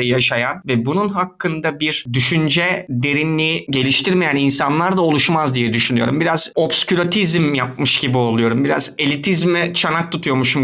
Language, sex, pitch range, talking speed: Turkish, male, 130-170 Hz, 125 wpm